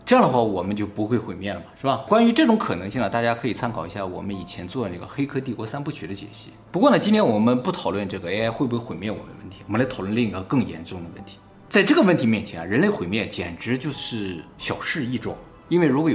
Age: 20-39